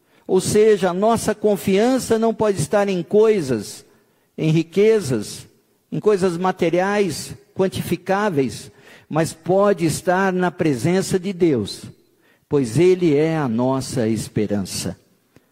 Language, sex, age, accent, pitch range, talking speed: Portuguese, male, 50-69, Brazilian, 180-230 Hz, 110 wpm